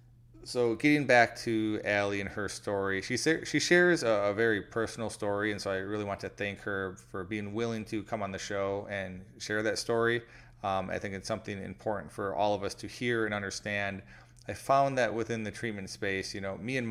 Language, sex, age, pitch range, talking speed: English, male, 30-49, 100-115 Hz, 215 wpm